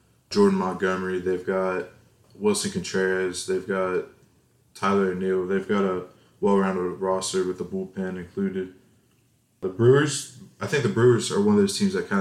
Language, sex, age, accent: English, male, 20-39, American